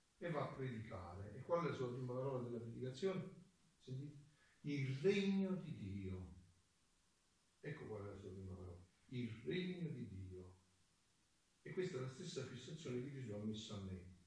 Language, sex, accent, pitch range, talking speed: Italian, male, native, 95-145 Hz, 170 wpm